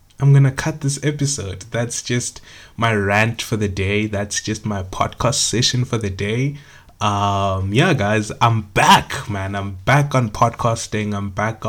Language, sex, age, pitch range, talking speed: English, male, 20-39, 100-120 Hz, 165 wpm